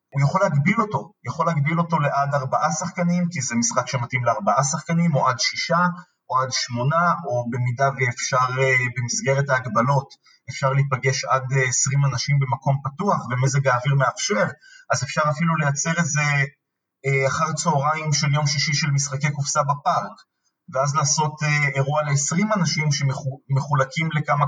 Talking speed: 140 wpm